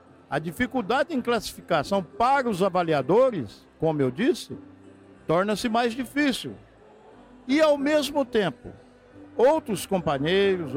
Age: 60-79